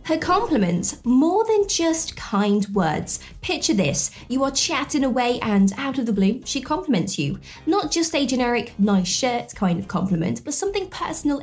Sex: female